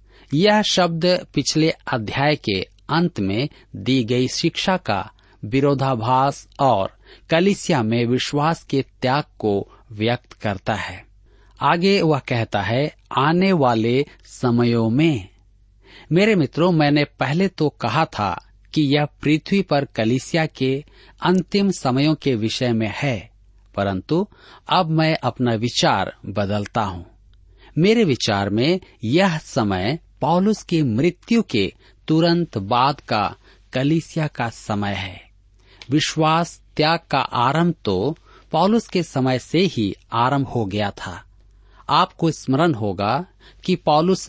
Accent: native